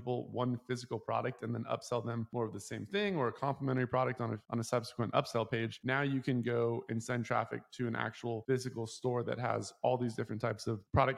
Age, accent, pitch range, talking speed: 20-39, American, 115-130 Hz, 225 wpm